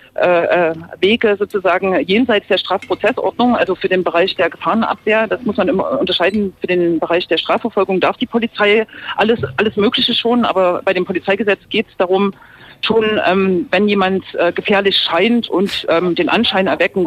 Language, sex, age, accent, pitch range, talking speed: German, female, 40-59, German, 185-225 Hz, 165 wpm